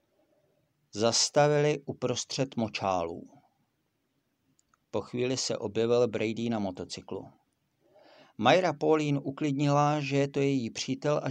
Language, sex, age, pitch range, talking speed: Czech, male, 50-69, 110-135 Hz, 100 wpm